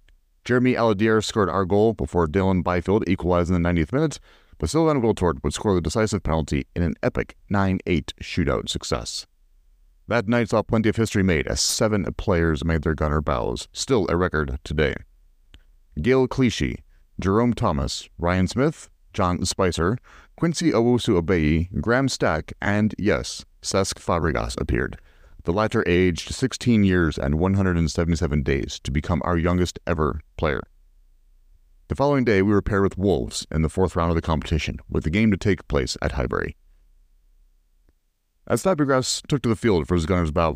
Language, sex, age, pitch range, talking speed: English, male, 40-59, 80-105 Hz, 160 wpm